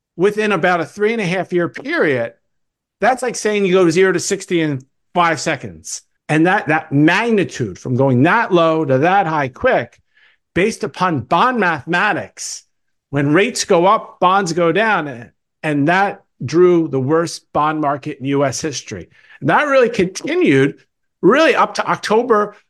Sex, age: male, 50-69